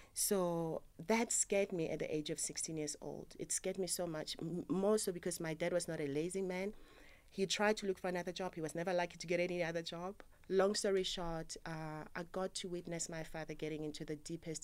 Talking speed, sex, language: 235 wpm, female, English